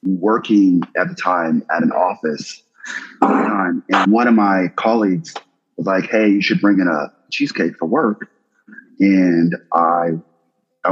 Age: 30-49